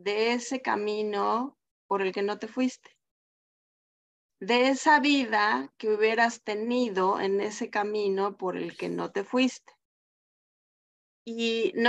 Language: English